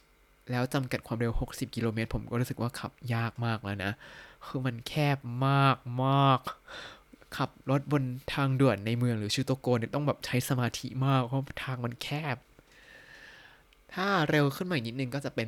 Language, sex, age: Thai, male, 20-39